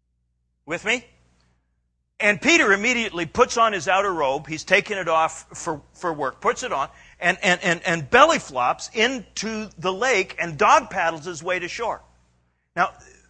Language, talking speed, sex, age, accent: English, 165 wpm, male, 50-69, American